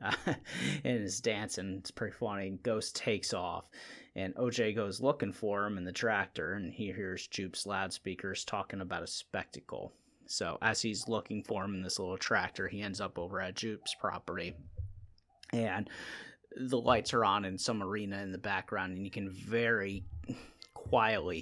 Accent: American